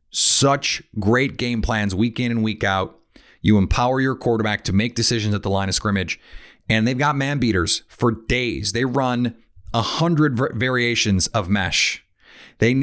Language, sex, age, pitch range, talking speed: English, male, 30-49, 100-120 Hz, 170 wpm